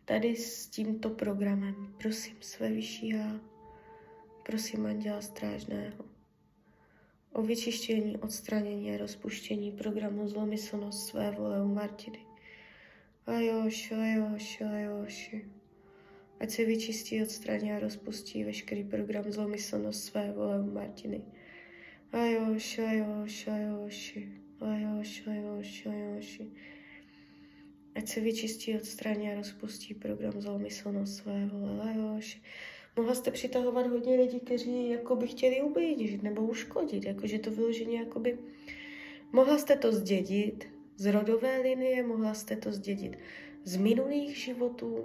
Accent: native